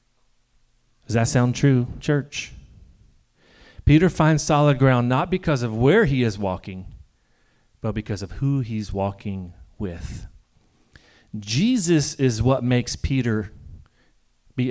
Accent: American